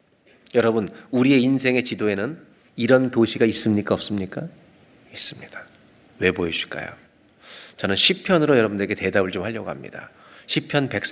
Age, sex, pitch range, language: 40-59, male, 100-125 Hz, Korean